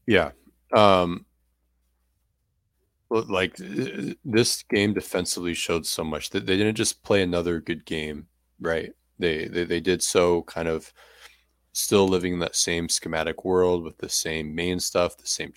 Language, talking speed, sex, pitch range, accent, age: English, 150 wpm, male, 80-95 Hz, American, 30-49